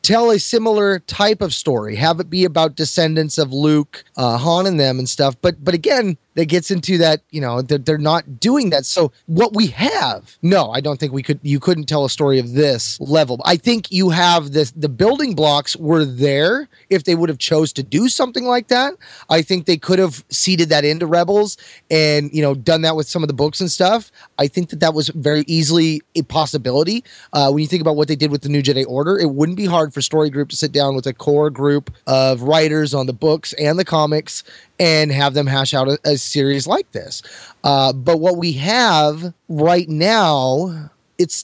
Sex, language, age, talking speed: male, English, 20-39, 225 wpm